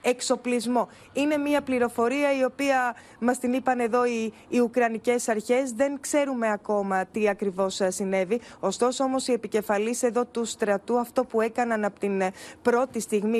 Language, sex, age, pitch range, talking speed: Greek, female, 20-39, 215-245 Hz, 150 wpm